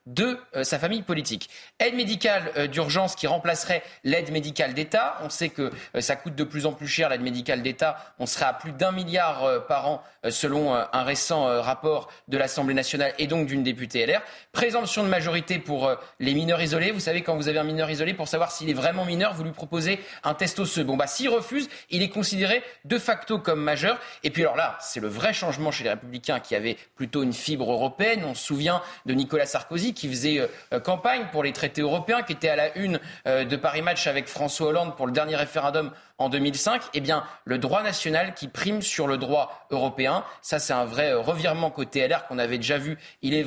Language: French